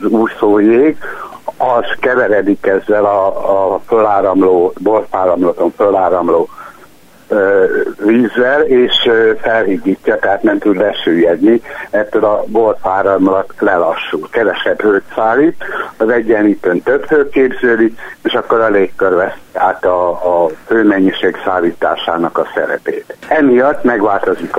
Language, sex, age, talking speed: Hungarian, male, 60-79, 100 wpm